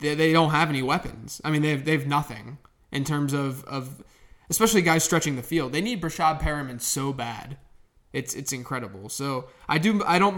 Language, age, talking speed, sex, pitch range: English, 20-39, 190 wpm, male, 135-165 Hz